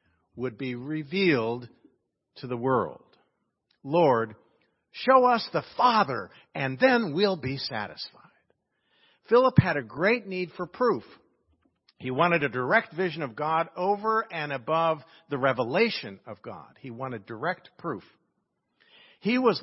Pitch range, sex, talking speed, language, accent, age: 125-180 Hz, male, 130 wpm, English, American, 50-69